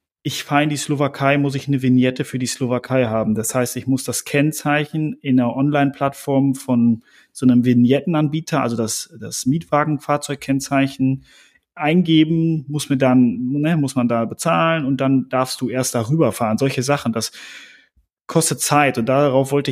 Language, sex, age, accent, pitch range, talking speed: German, male, 30-49, German, 125-150 Hz, 165 wpm